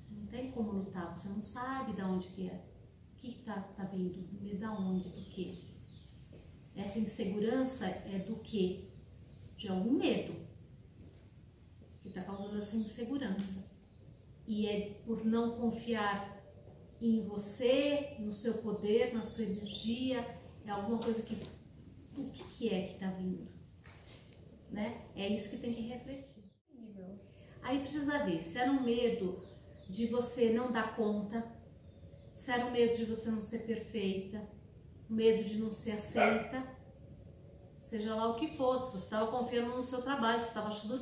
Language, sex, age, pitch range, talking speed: Portuguese, female, 40-59, 205-240 Hz, 155 wpm